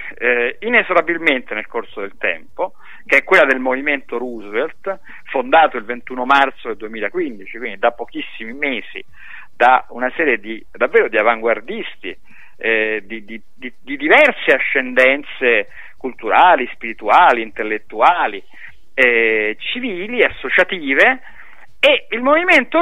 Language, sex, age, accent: Italian, male, 50-69, native